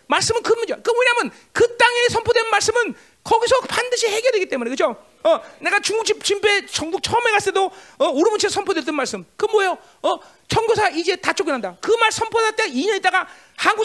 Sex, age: male, 40-59